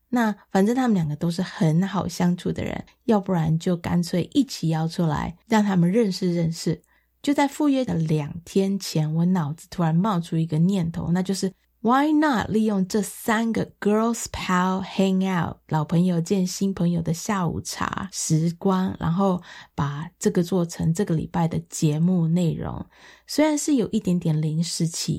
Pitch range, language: 165-190 Hz, Chinese